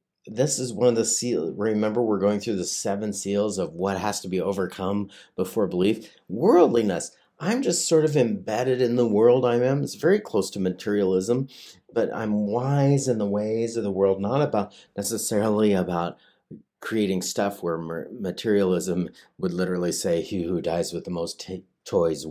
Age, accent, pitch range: 40-59, American, 90-115 Hz